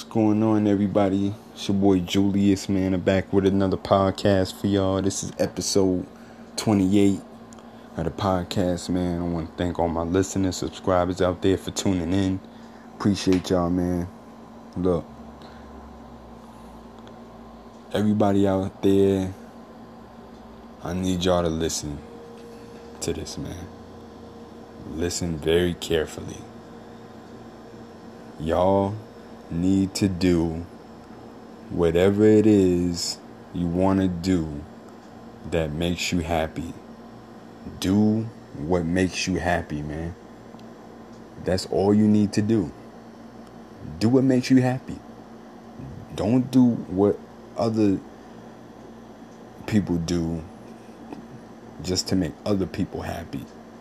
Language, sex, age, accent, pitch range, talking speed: English, male, 20-39, American, 85-100 Hz, 110 wpm